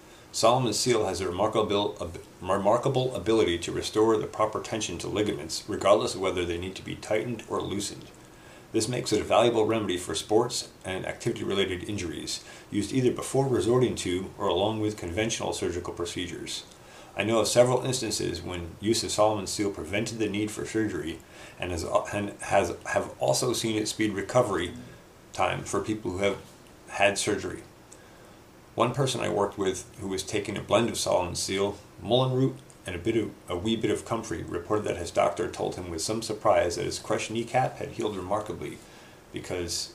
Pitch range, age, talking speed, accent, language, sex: 95-115 Hz, 40-59, 175 wpm, American, English, male